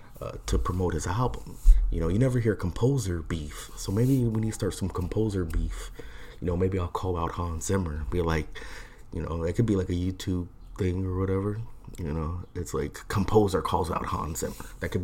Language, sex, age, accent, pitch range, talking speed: English, male, 30-49, American, 85-115 Hz, 210 wpm